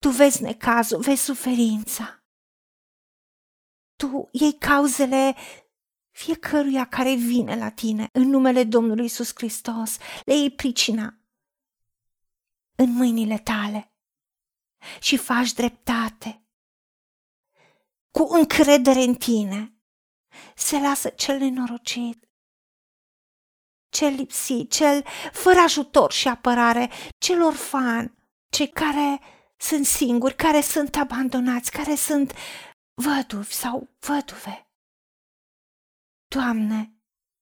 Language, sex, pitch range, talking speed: Romanian, female, 240-295 Hz, 90 wpm